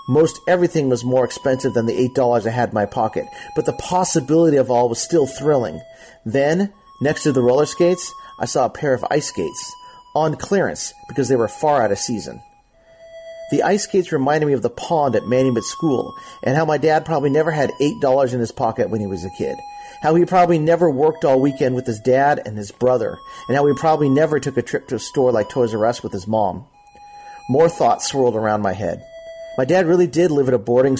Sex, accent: male, American